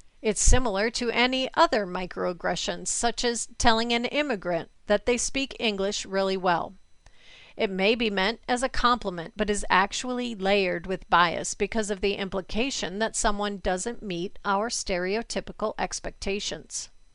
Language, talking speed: English, 145 wpm